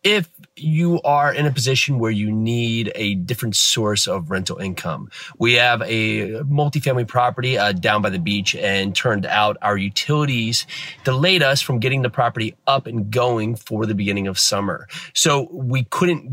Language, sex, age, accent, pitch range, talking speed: English, male, 30-49, American, 110-140 Hz, 175 wpm